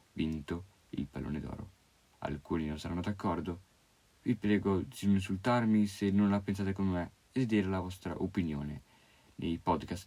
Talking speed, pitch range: 160 wpm, 85-105 Hz